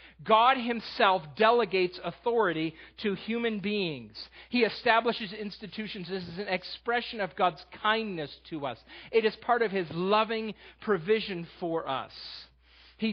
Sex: male